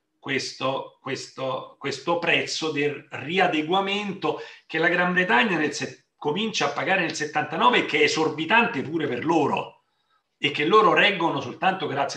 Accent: native